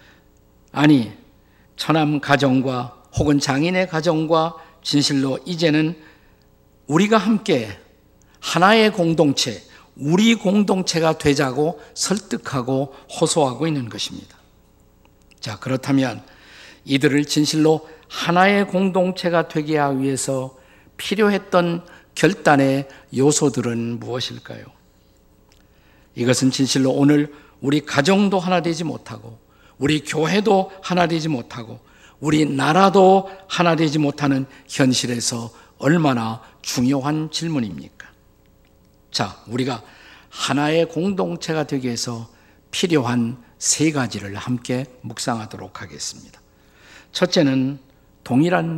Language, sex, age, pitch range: Korean, male, 50-69, 130-165 Hz